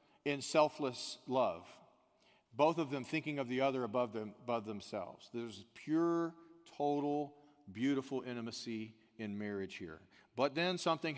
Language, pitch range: English, 125-165 Hz